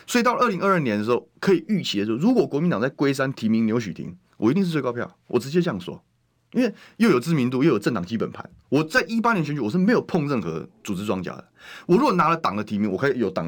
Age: 30-49